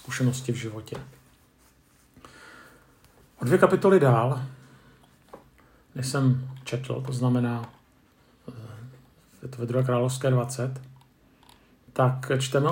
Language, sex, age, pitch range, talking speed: Czech, male, 50-69, 125-135 Hz, 90 wpm